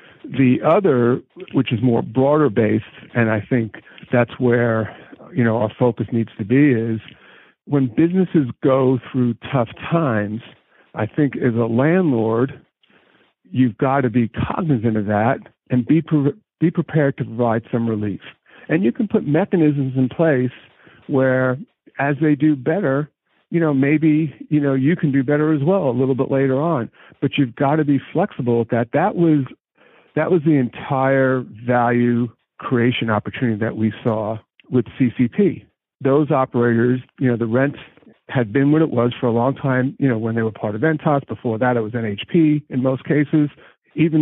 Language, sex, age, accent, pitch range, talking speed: English, male, 50-69, American, 120-150 Hz, 175 wpm